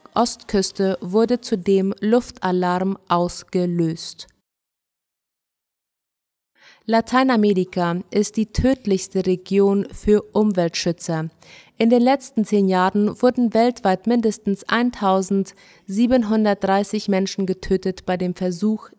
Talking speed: 80 wpm